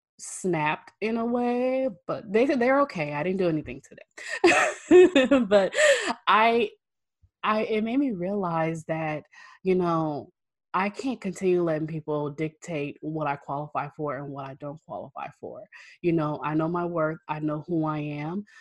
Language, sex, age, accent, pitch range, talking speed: English, female, 20-39, American, 150-180 Hz, 165 wpm